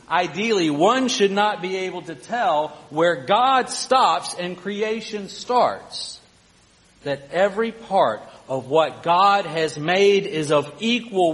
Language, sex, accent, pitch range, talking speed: English, male, American, 135-180 Hz, 130 wpm